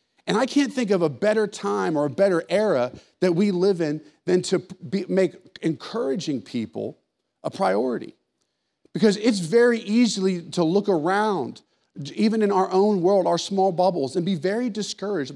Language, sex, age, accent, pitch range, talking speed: English, male, 40-59, American, 170-215 Hz, 165 wpm